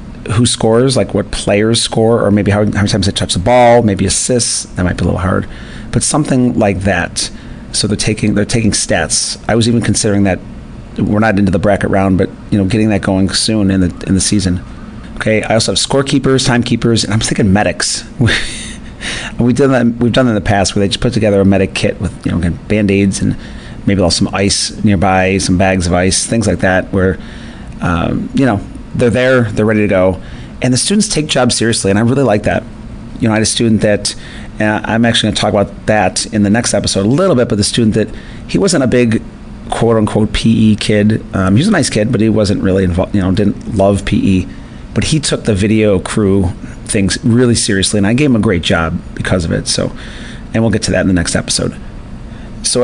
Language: English